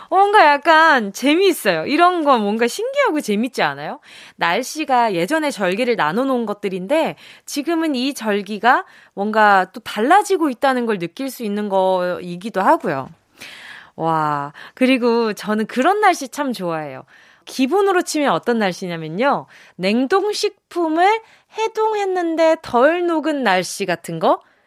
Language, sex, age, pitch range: Korean, female, 20-39, 210-330 Hz